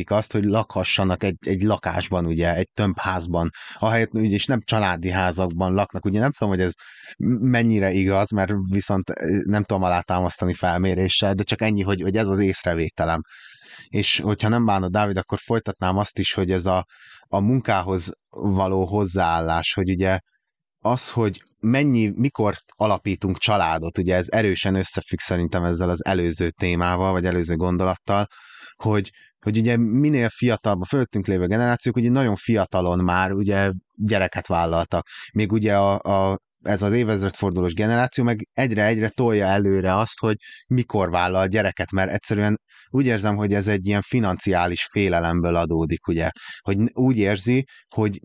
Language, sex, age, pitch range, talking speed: Hungarian, male, 20-39, 95-110 Hz, 155 wpm